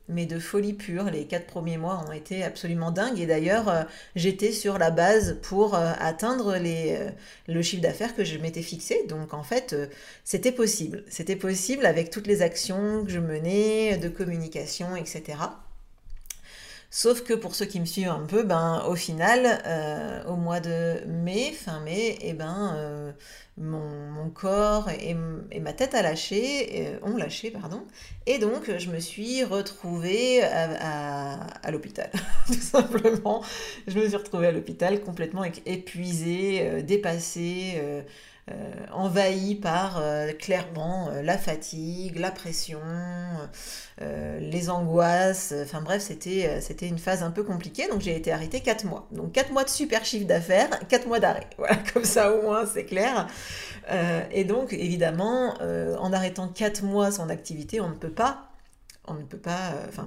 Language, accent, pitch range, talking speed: French, French, 165-210 Hz, 170 wpm